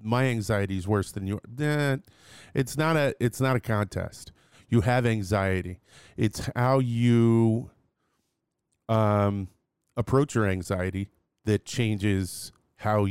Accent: American